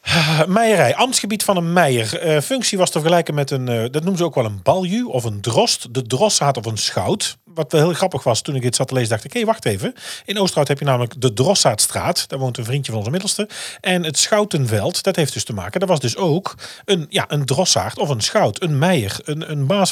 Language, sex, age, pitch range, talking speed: Dutch, male, 40-59, 120-175 Hz, 245 wpm